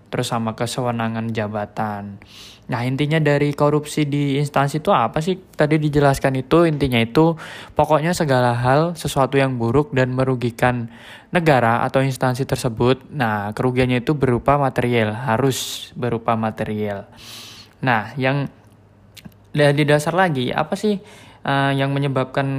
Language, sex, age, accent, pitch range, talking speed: Indonesian, male, 20-39, native, 115-150 Hz, 125 wpm